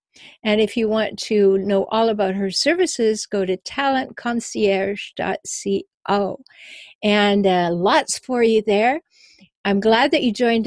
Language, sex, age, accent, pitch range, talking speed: English, female, 60-79, American, 195-230 Hz, 135 wpm